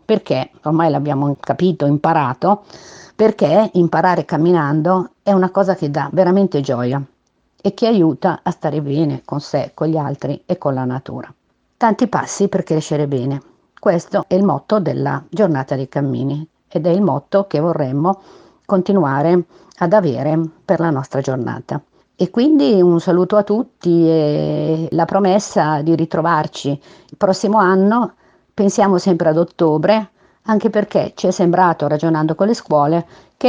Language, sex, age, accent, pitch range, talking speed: Italian, female, 50-69, native, 155-195 Hz, 150 wpm